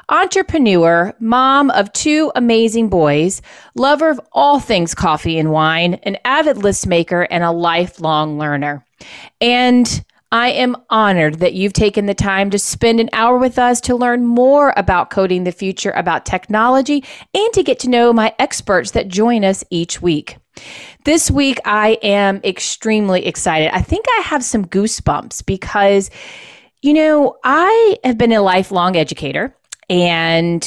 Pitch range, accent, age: 165-240 Hz, American, 30-49